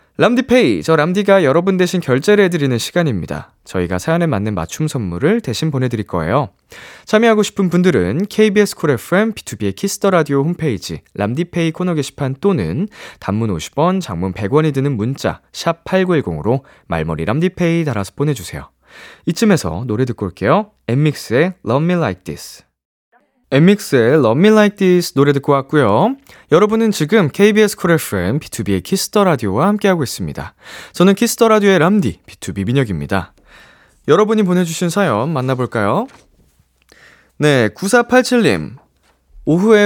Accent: native